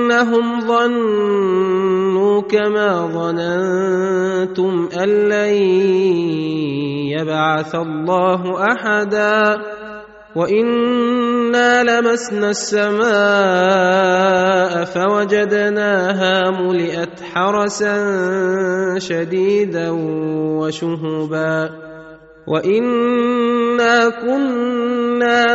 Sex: male